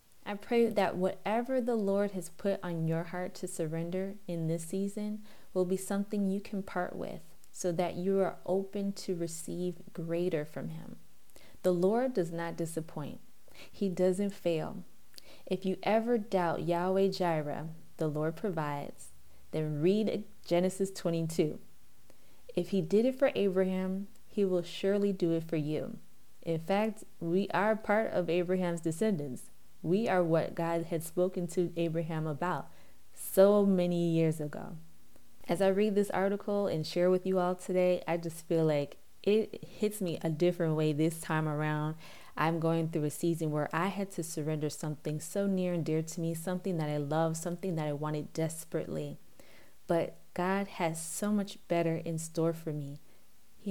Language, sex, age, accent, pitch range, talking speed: English, female, 20-39, American, 160-195 Hz, 165 wpm